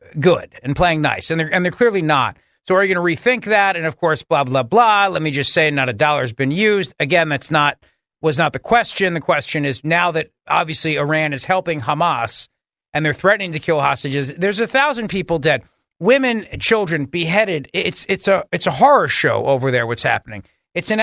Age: 40-59